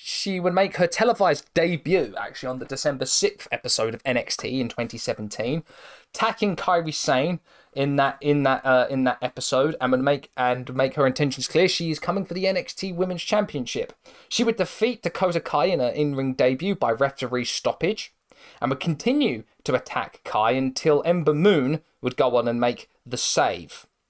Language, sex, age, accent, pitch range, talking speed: English, male, 20-39, British, 125-160 Hz, 180 wpm